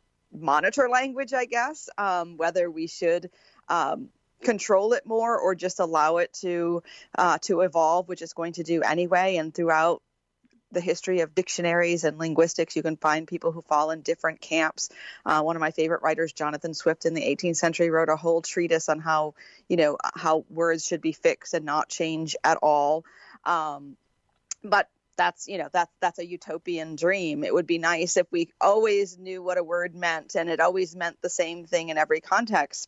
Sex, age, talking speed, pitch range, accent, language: female, 30-49, 190 wpm, 160-185 Hz, American, English